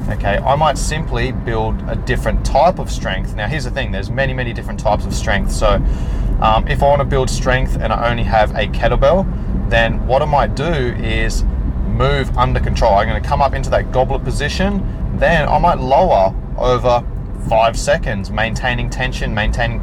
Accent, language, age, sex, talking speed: Australian, English, 30-49, male, 185 wpm